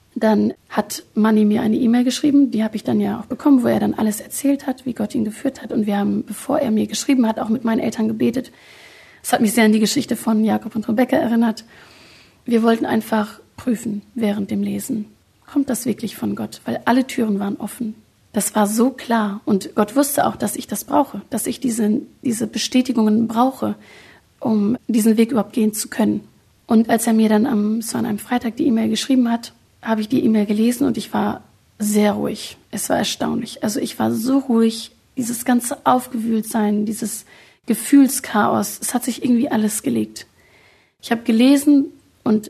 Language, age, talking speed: German, 30-49, 195 wpm